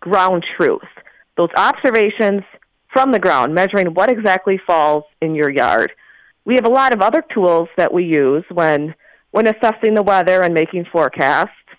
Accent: American